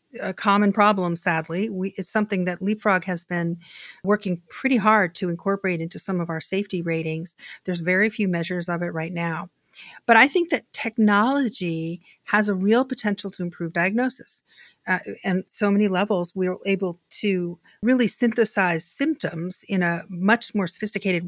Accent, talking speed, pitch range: American, 165 wpm, 175-210 Hz